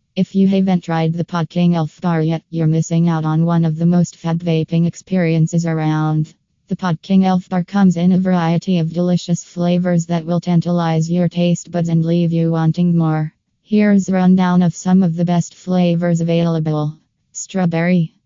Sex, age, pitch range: female, 20-39, 165-180 Hz